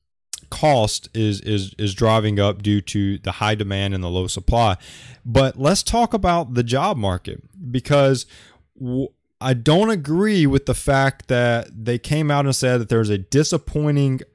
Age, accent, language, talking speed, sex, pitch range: 20-39, American, English, 165 wpm, male, 105-140 Hz